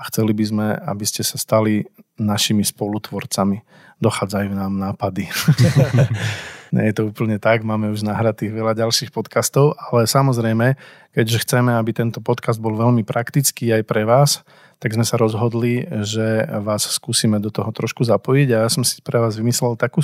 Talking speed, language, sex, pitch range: 170 wpm, Slovak, male, 110-125 Hz